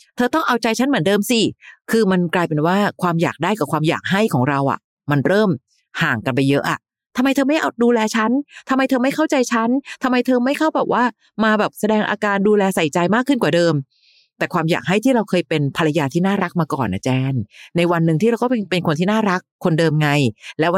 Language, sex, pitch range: Thai, female, 155-210 Hz